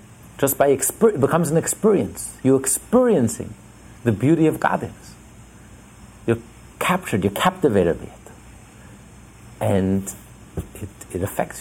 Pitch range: 105-135 Hz